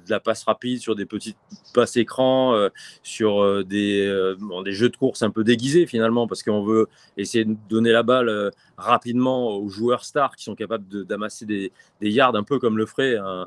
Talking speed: 225 wpm